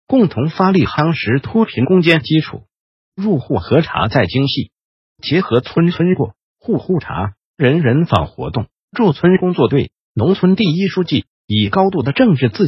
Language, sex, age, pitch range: Chinese, male, 50-69, 125-185 Hz